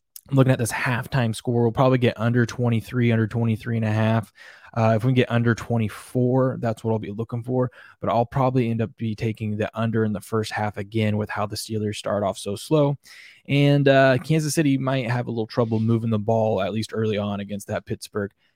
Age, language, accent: 20-39, English, American